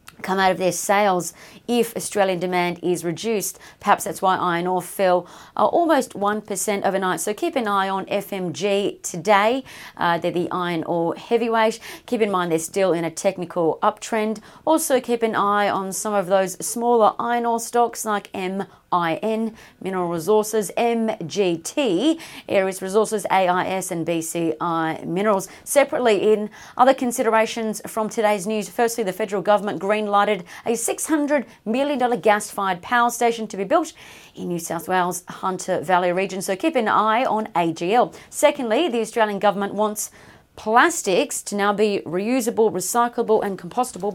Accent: Australian